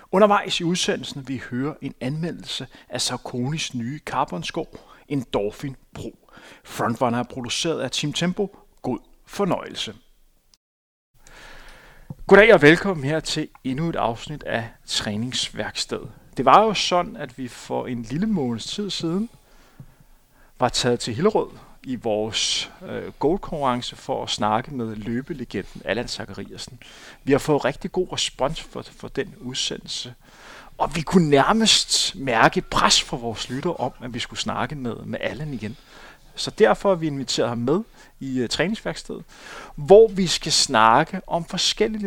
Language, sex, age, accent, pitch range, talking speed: Danish, male, 30-49, native, 120-170 Hz, 145 wpm